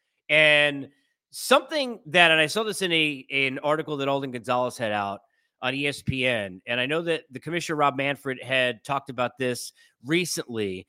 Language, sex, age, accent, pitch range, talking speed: English, male, 30-49, American, 140-195 Hz, 170 wpm